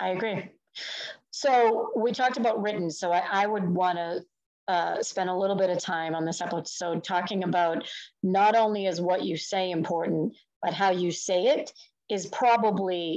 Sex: female